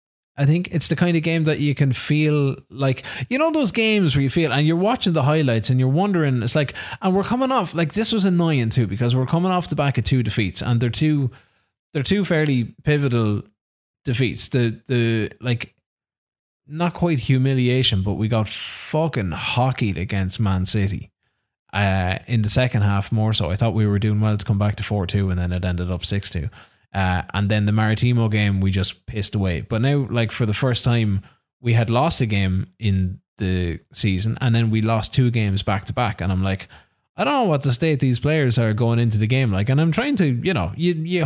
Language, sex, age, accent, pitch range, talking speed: English, male, 20-39, Irish, 105-150 Hz, 225 wpm